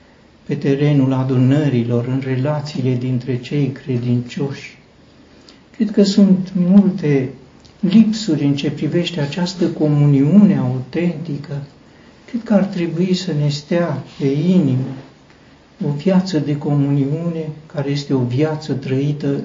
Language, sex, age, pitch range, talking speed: Romanian, male, 60-79, 140-180 Hz, 115 wpm